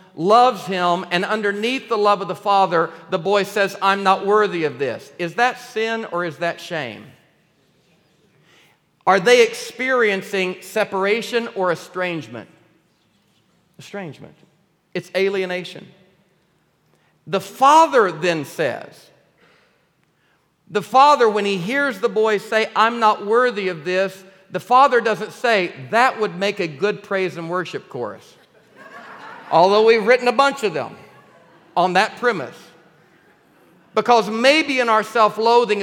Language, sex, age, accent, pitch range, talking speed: English, male, 50-69, American, 165-220 Hz, 130 wpm